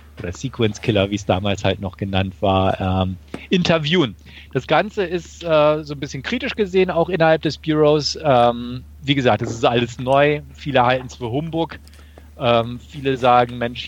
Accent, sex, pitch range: German, male, 110-150 Hz